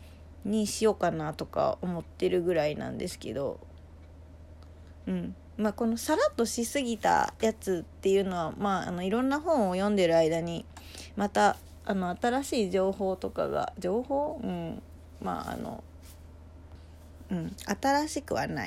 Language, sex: Japanese, female